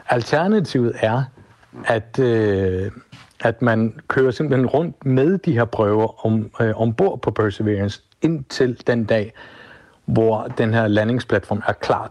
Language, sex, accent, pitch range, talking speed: Danish, male, native, 105-130 Hz, 135 wpm